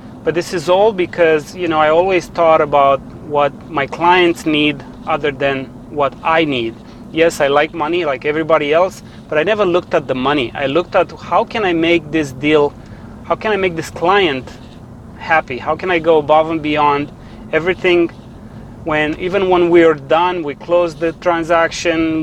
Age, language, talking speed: 30-49, English, 185 wpm